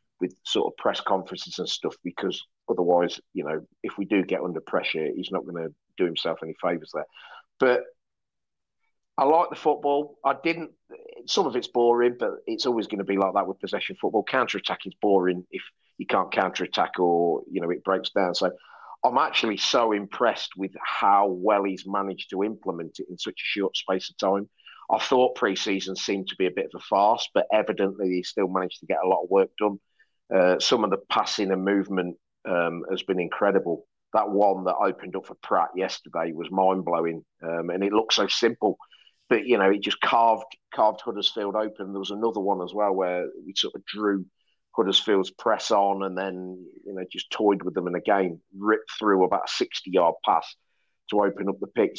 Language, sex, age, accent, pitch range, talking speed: English, male, 40-59, British, 95-115 Hz, 200 wpm